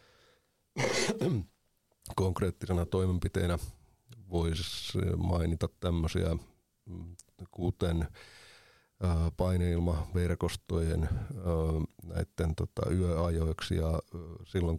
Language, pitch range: Finnish, 80-95 Hz